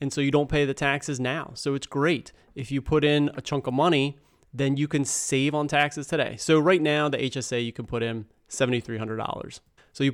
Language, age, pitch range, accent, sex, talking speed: English, 30-49, 125-150 Hz, American, male, 225 wpm